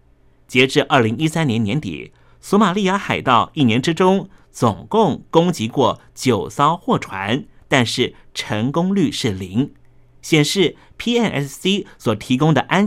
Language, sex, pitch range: Chinese, male, 120-175 Hz